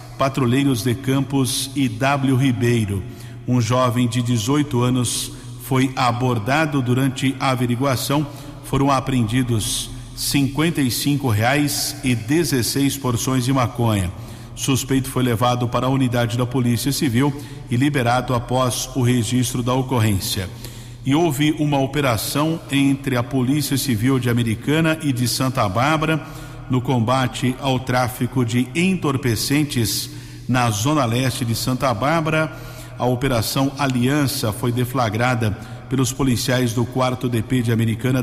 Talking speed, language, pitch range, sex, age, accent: 125 wpm, Portuguese, 120-140 Hz, male, 50-69, Brazilian